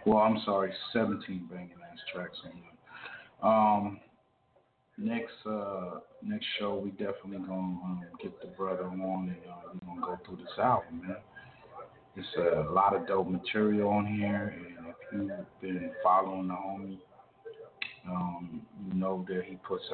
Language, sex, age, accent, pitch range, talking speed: English, male, 30-49, American, 95-105 Hz, 160 wpm